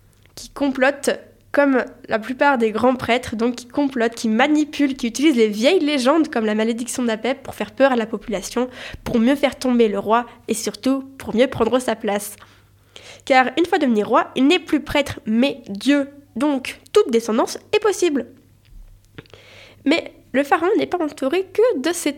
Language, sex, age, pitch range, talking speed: French, female, 10-29, 220-285 Hz, 180 wpm